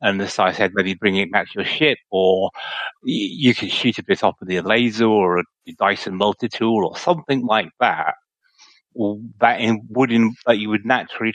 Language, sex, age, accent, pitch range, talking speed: English, male, 30-49, British, 105-130 Hz, 200 wpm